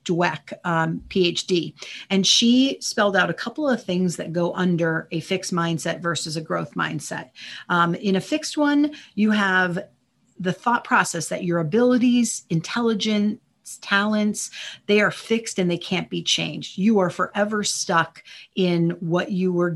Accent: American